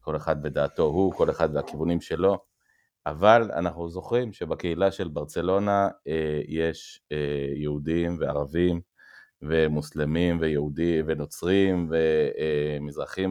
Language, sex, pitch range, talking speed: Hebrew, male, 80-110 Hz, 95 wpm